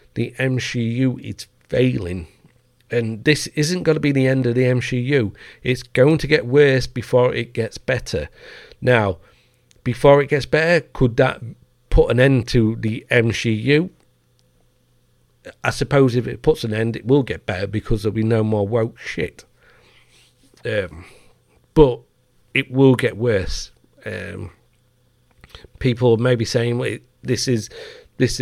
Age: 40-59